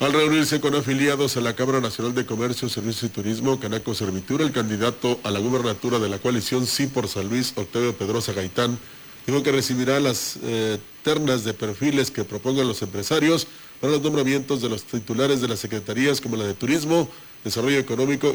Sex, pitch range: male, 115-140 Hz